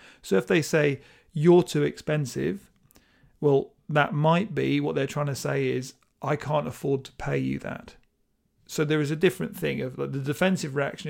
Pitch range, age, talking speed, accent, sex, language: 135-160 Hz, 40-59, 185 wpm, British, male, English